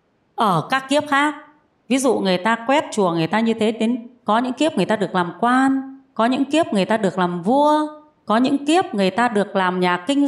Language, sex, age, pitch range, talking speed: Vietnamese, female, 20-39, 185-265 Hz, 235 wpm